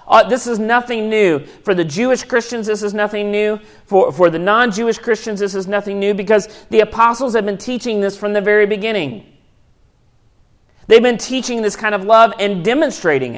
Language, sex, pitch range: English, male, 180-225 Hz